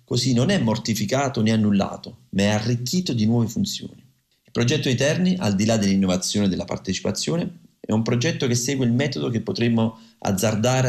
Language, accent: Italian, native